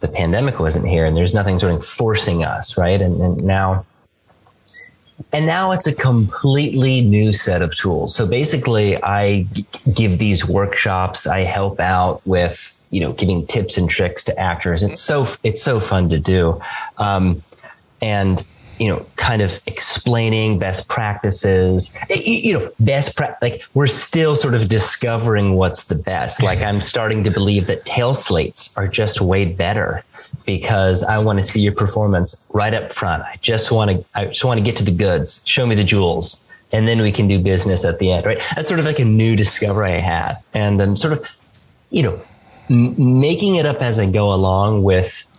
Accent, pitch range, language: American, 95-115 Hz, English